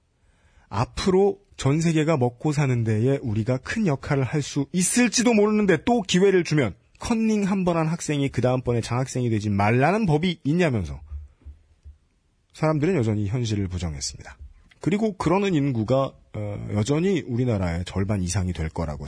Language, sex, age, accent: Korean, male, 40-59, native